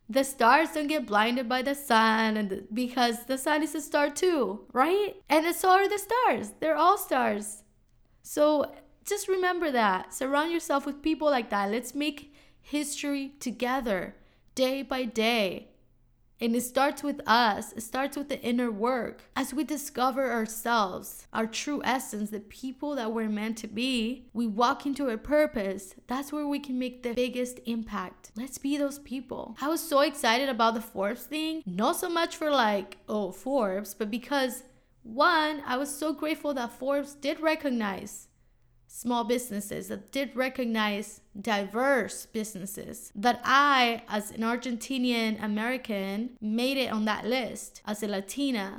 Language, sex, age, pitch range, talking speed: English, female, 20-39, 215-275 Hz, 160 wpm